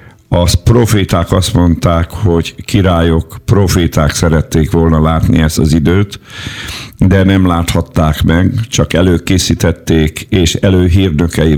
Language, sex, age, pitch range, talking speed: Hungarian, male, 50-69, 80-95 Hz, 110 wpm